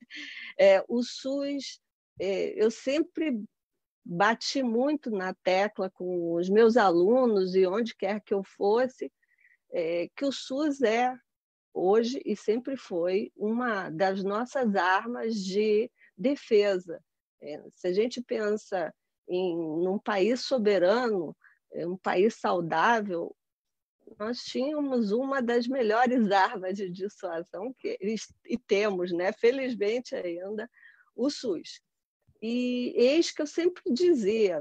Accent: Brazilian